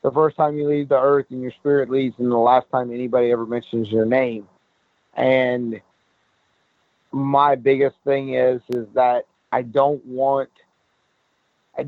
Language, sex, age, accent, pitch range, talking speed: English, male, 40-59, American, 125-145 Hz, 155 wpm